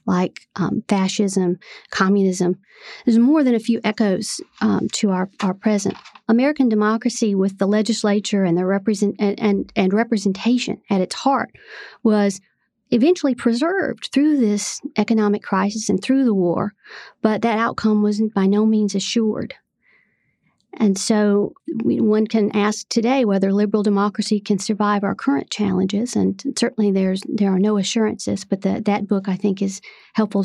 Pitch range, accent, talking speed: 200-225 Hz, American, 155 wpm